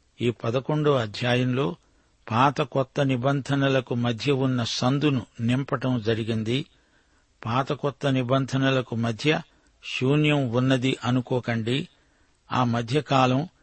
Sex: male